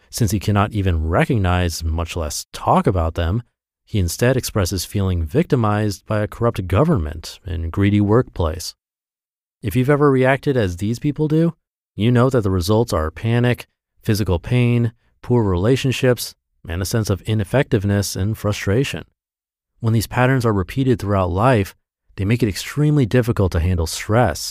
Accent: American